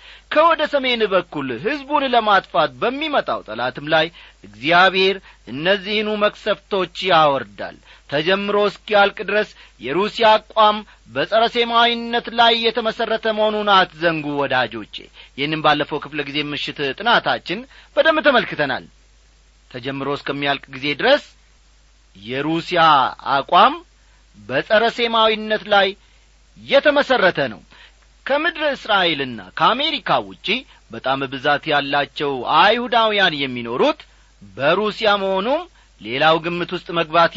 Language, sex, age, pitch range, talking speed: Amharic, male, 40-59, 150-215 Hz, 90 wpm